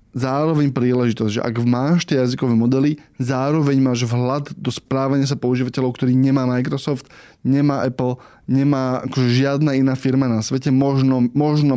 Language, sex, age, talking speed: Slovak, male, 20-39, 150 wpm